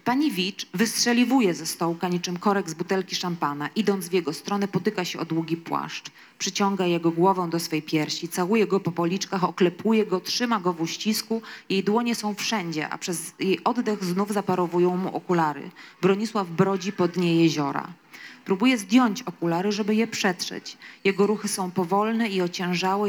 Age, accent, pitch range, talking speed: 20-39, native, 175-215 Hz, 165 wpm